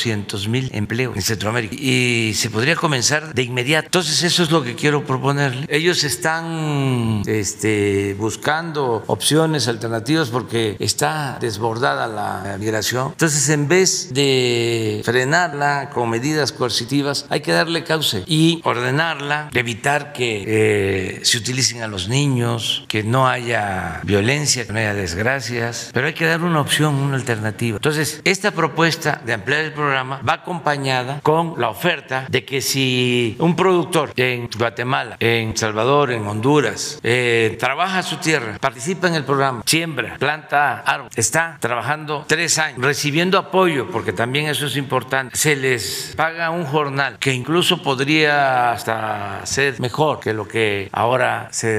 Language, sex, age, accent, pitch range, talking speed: Spanish, male, 50-69, Mexican, 115-155 Hz, 145 wpm